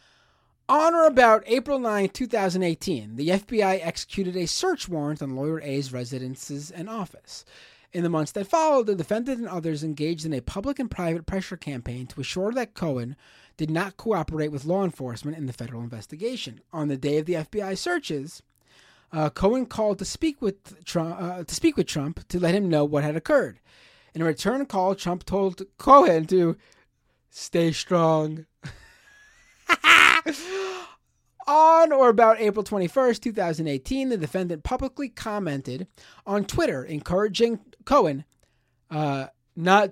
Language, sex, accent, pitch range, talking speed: English, male, American, 155-220 Hz, 150 wpm